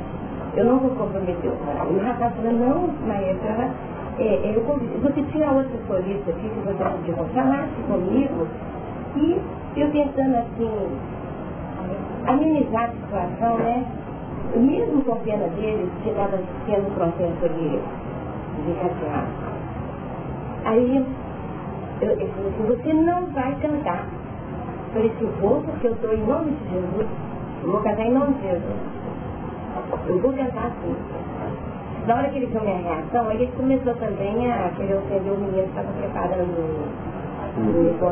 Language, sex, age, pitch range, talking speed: Portuguese, female, 40-59, 195-260 Hz, 155 wpm